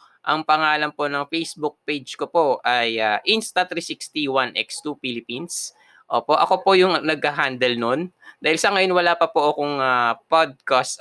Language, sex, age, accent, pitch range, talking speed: Filipino, male, 20-39, native, 135-180 Hz, 145 wpm